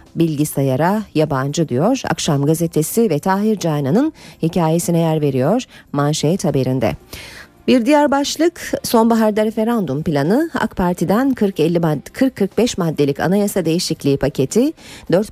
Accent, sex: native, female